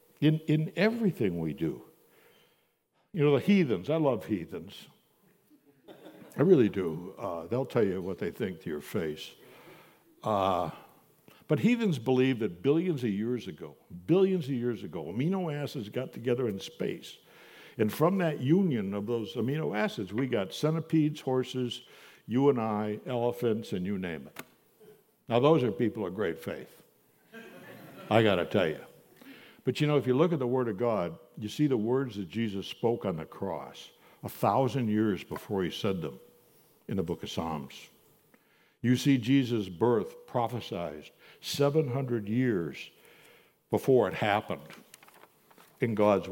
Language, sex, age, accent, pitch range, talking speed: English, male, 60-79, American, 105-145 Hz, 155 wpm